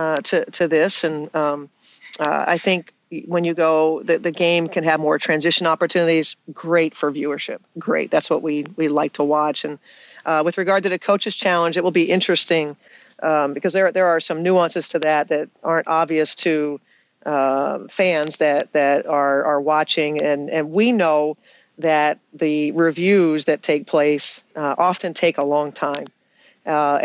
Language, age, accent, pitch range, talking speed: English, 50-69, American, 150-175 Hz, 180 wpm